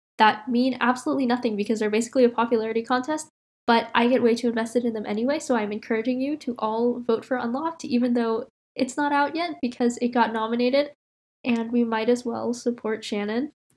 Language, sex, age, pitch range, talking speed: English, female, 10-29, 215-245 Hz, 195 wpm